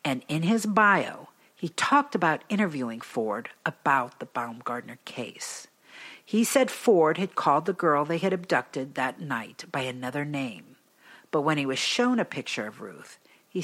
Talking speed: 165 wpm